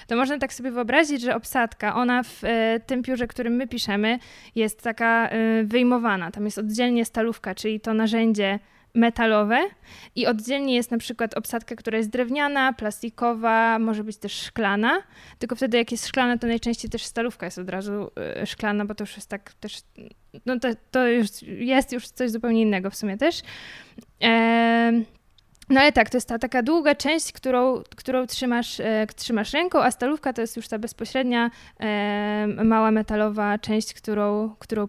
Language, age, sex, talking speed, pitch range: Polish, 20-39, female, 170 wpm, 215-245 Hz